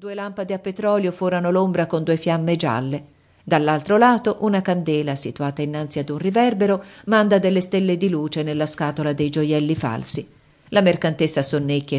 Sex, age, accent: female, 50-69, native